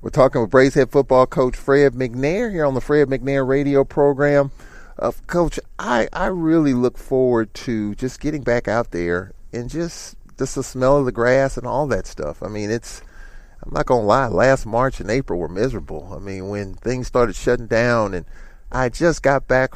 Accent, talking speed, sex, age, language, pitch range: American, 200 wpm, male, 40-59, English, 110-135 Hz